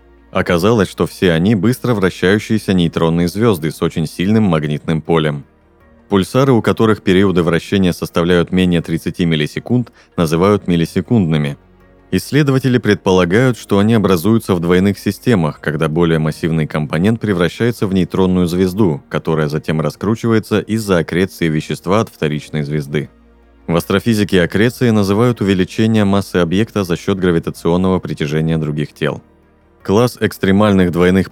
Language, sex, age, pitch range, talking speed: Russian, male, 30-49, 80-100 Hz, 125 wpm